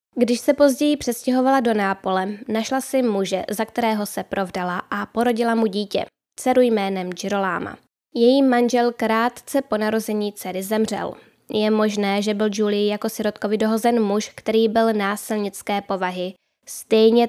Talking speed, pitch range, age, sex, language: 140 wpm, 205-235 Hz, 10-29, female, Czech